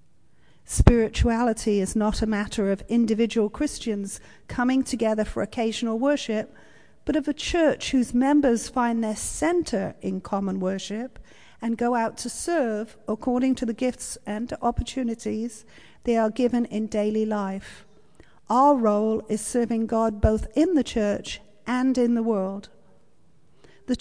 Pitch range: 210-255 Hz